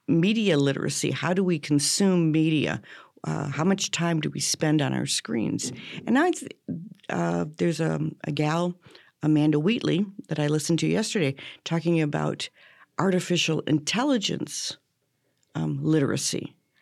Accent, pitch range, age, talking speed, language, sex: American, 145-185 Hz, 50-69, 135 wpm, English, female